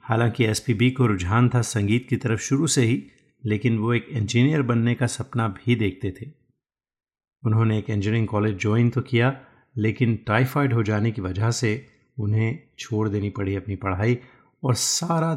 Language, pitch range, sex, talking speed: Hindi, 105-125 Hz, male, 170 wpm